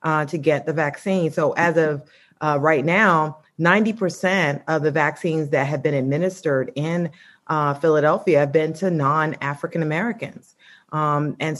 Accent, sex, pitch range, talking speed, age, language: American, female, 150-175 Hz, 150 wpm, 30-49, English